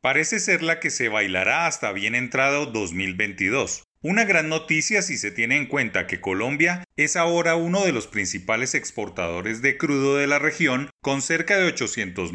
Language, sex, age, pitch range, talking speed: Spanish, male, 30-49, 120-165 Hz, 175 wpm